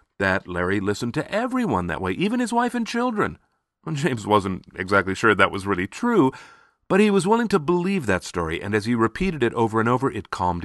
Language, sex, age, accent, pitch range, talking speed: English, male, 40-59, American, 85-115 Hz, 215 wpm